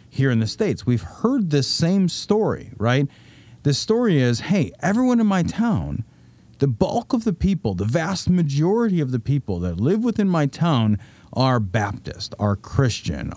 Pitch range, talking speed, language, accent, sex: 110-175 Hz, 170 wpm, English, American, male